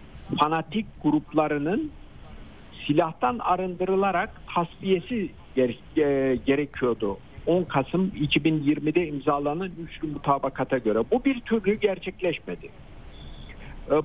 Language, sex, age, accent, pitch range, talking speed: Turkish, male, 60-79, native, 145-195 Hz, 85 wpm